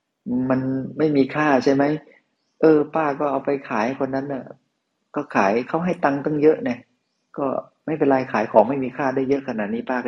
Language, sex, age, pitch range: Thai, male, 30-49, 100-120 Hz